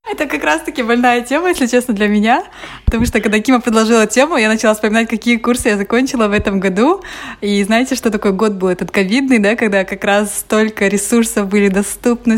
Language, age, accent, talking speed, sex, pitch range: Russian, 20-39, native, 205 wpm, female, 195-235 Hz